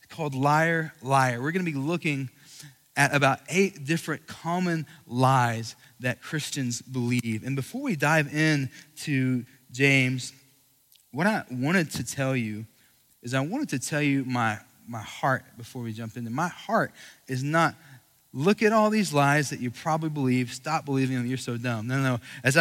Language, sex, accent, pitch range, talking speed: English, male, American, 130-170 Hz, 175 wpm